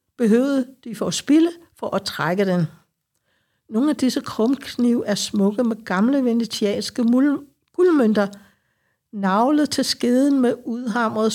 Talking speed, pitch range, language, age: 125 wpm, 205-255 Hz, Danish, 60-79